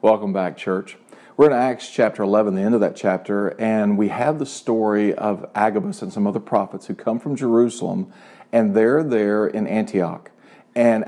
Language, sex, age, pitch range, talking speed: English, male, 40-59, 100-120 Hz, 185 wpm